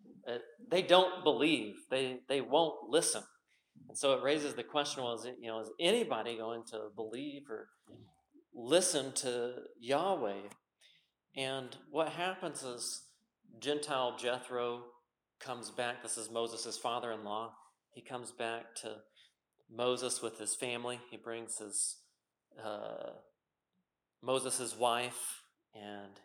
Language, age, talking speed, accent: English, 40-59, 125 wpm, American